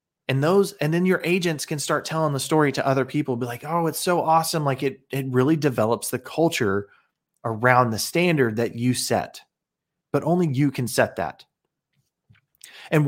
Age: 30-49